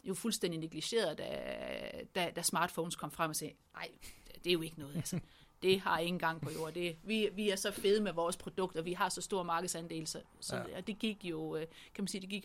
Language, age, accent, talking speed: Danish, 30-49, native, 240 wpm